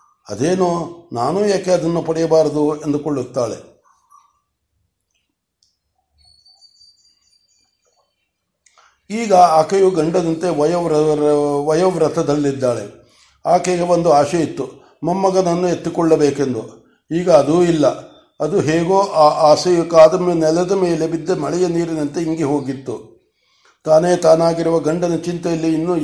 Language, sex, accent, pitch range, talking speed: Kannada, male, native, 150-175 Hz, 85 wpm